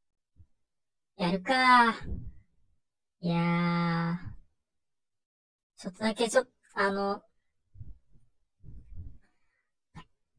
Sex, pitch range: male, 165-215 Hz